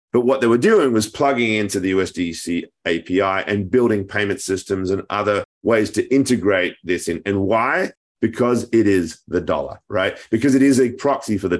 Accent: Australian